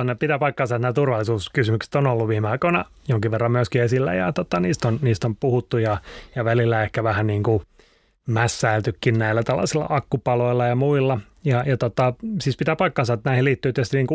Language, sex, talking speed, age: Finnish, male, 180 wpm, 30-49